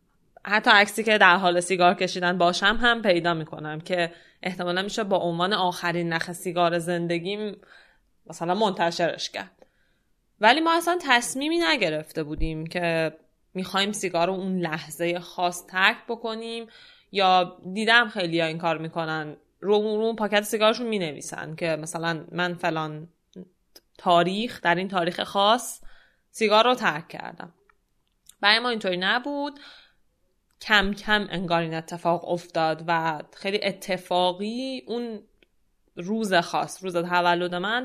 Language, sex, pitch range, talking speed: Persian, female, 170-225 Hz, 130 wpm